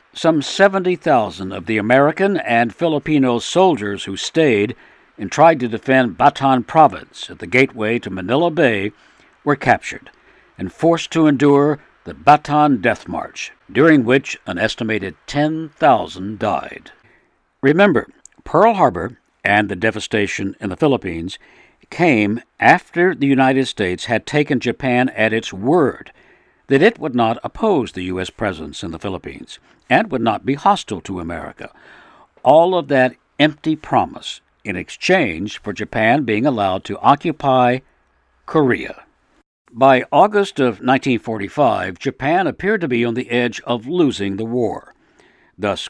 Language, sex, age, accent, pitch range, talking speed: English, male, 60-79, American, 105-145 Hz, 140 wpm